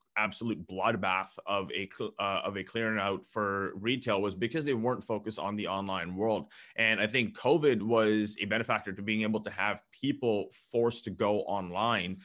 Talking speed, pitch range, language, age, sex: 185 wpm, 105-120 Hz, English, 30-49, male